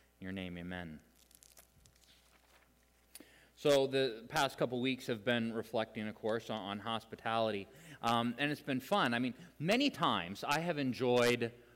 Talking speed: 150 wpm